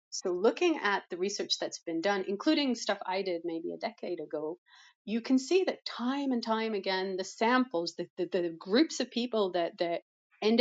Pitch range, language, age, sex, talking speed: 175-230 Hz, English, 30-49, female, 200 wpm